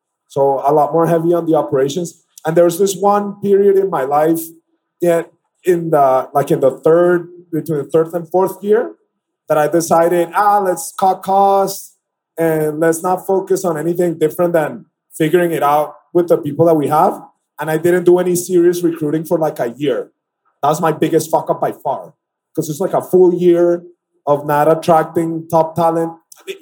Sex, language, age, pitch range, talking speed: male, English, 30-49, 155-180 Hz, 190 wpm